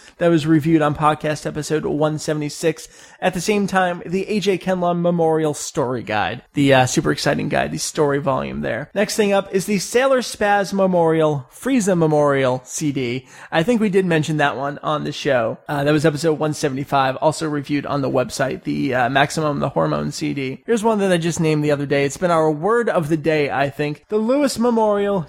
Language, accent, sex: English, American, male